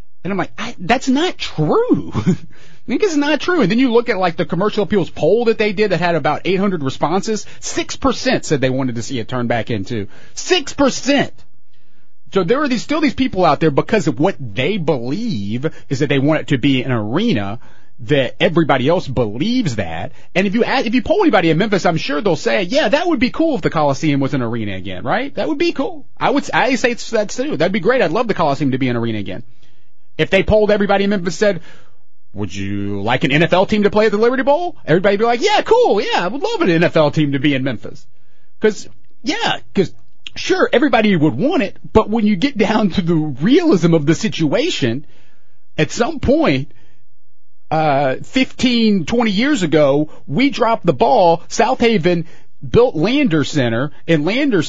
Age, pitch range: 30-49, 135-230 Hz